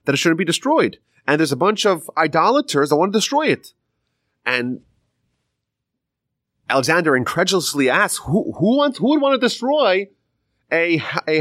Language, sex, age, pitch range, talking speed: English, male, 30-49, 105-155 Hz, 160 wpm